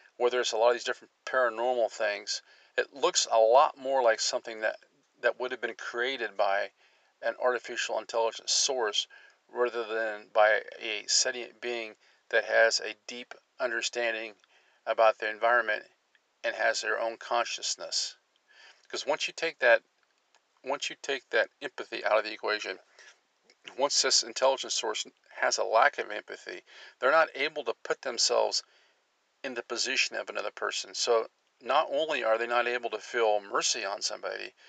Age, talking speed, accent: 50-69, 160 wpm, American